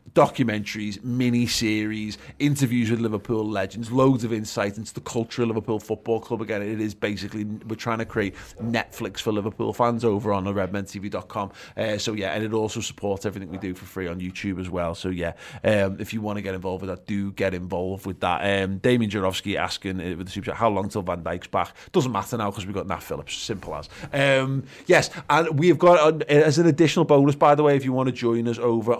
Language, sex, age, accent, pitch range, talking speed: English, male, 30-49, British, 100-120 Hz, 225 wpm